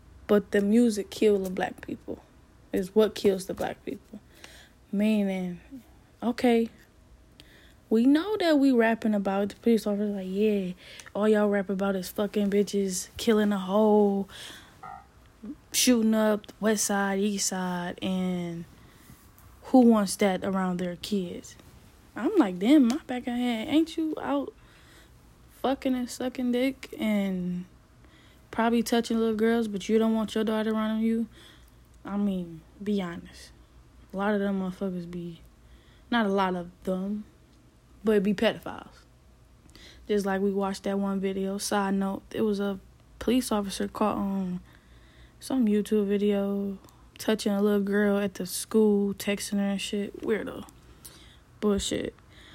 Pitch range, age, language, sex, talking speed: 195-230 Hz, 10-29, English, female, 145 wpm